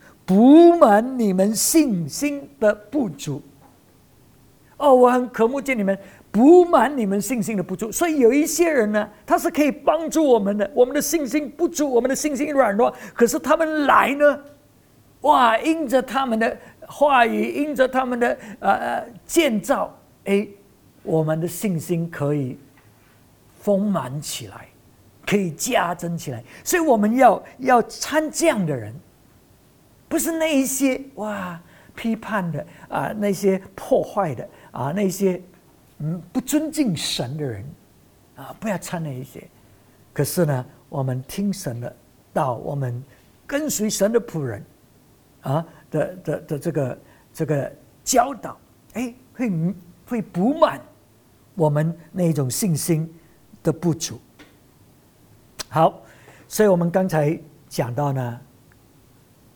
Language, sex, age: English, male, 50-69